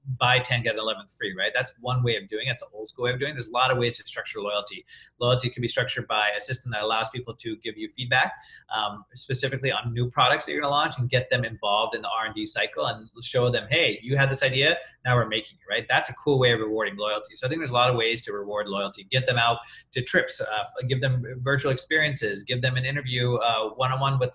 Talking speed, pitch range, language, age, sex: 270 wpm, 115-140 Hz, English, 30-49, male